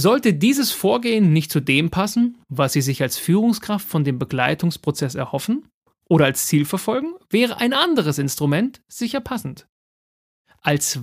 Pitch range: 140-200 Hz